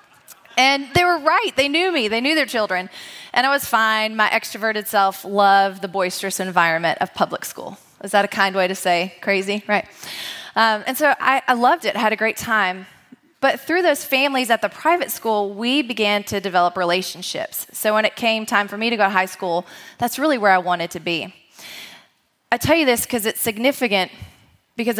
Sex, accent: female, American